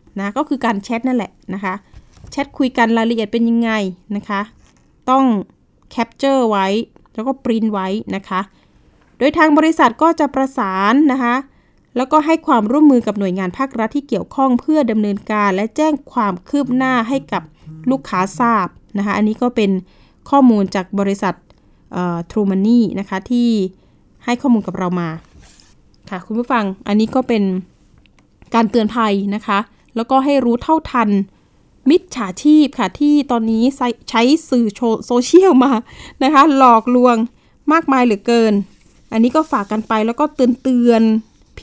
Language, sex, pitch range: Thai, female, 205-270 Hz